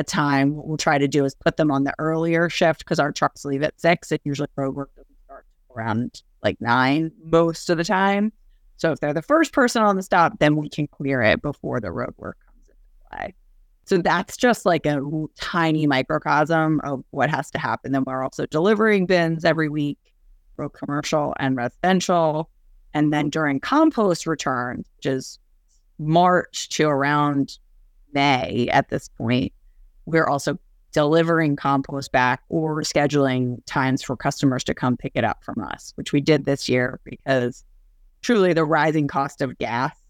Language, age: English, 30-49